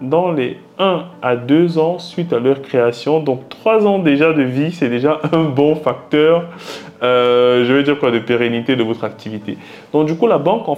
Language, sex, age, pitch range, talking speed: French, male, 20-39, 125-170 Hz, 205 wpm